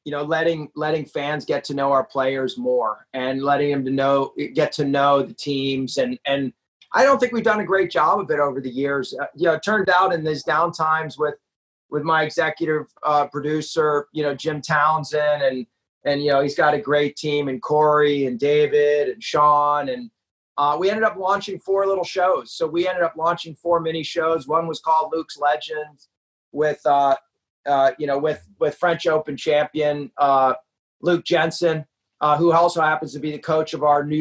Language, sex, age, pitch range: English, male, 30-49, 140-160 Hz